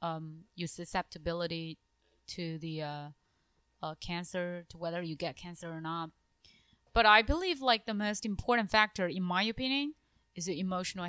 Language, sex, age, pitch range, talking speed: English, female, 20-39, 170-210 Hz, 155 wpm